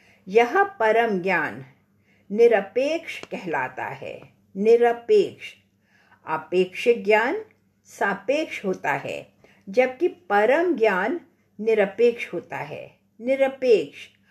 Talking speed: 80 wpm